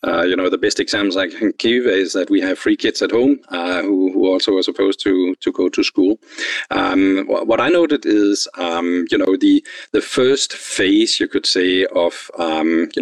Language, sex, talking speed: English, male, 215 wpm